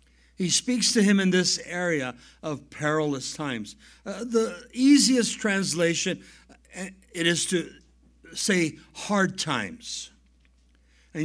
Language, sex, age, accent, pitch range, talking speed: English, male, 60-79, American, 155-210 Hz, 110 wpm